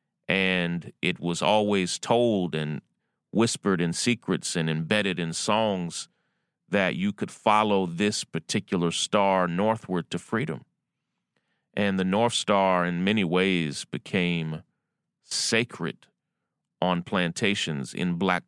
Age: 30-49